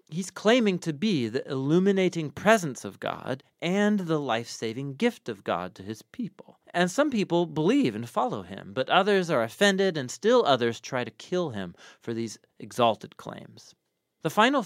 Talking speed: 170 wpm